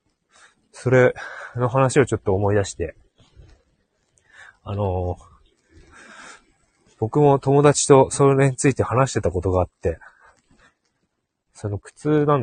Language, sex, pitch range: Japanese, male, 95-120 Hz